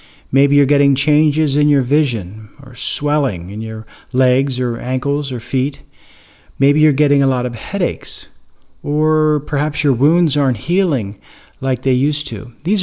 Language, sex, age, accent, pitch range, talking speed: English, male, 40-59, American, 125-155 Hz, 160 wpm